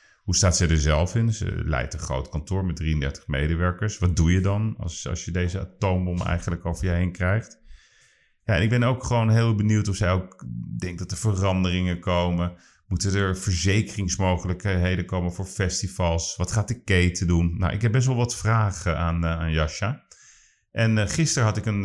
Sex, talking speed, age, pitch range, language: male, 195 wpm, 40-59, 85-100 Hz, Dutch